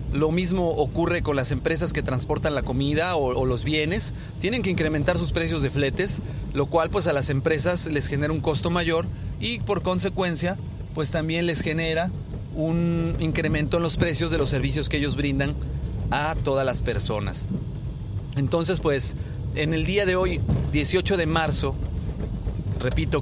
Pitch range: 125-165 Hz